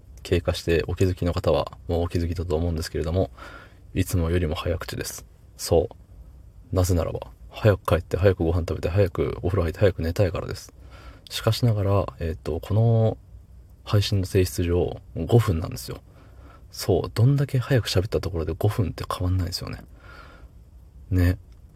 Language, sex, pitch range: Japanese, male, 85-105 Hz